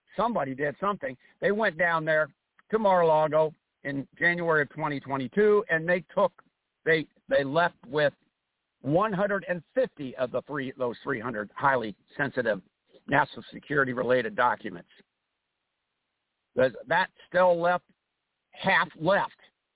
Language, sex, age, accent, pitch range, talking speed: English, male, 60-79, American, 145-180 Hz, 135 wpm